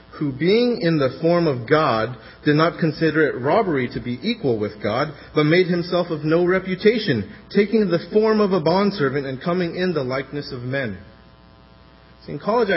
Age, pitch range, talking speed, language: 30-49, 105-165 Hz, 180 wpm, English